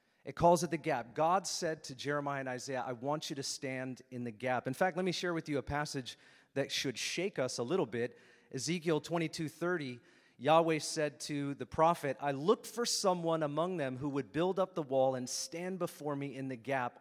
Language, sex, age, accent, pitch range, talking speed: English, male, 30-49, American, 130-170 Hz, 215 wpm